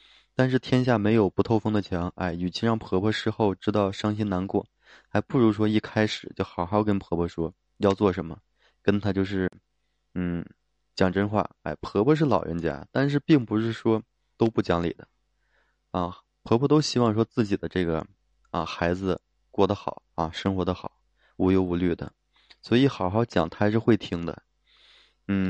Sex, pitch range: male, 90-110 Hz